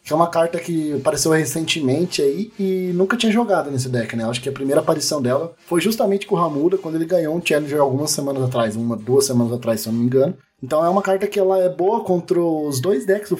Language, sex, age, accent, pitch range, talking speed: Portuguese, male, 20-39, Brazilian, 130-175 Hz, 250 wpm